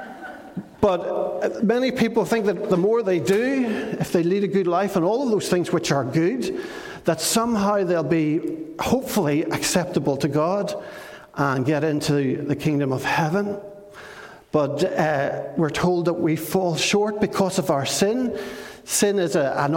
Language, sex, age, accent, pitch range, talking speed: English, male, 60-79, Irish, 155-215 Hz, 165 wpm